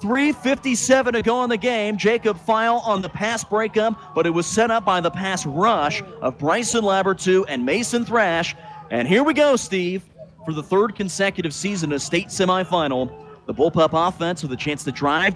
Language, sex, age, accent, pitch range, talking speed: English, male, 30-49, American, 185-310 Hz, 185 wpm